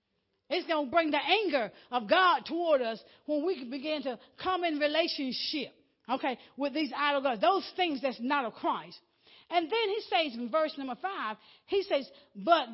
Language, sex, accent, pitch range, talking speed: English, female, American, 240-345 Hz, 185 wpm